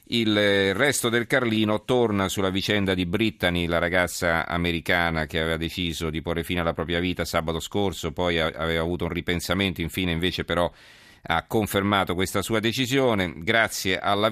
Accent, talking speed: native, 160 wpm